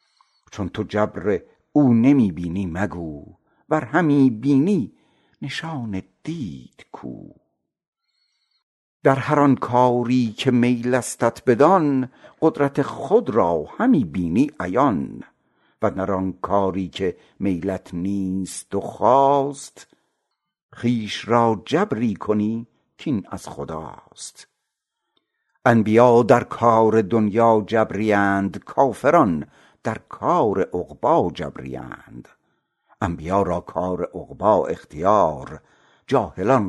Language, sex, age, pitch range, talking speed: Persian, male, 60-79, 95-125 Hz, 100 wpm